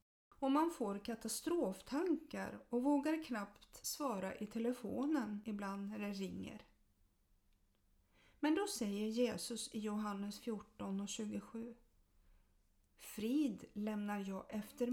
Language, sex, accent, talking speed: Swedish, female, native, 110 wpm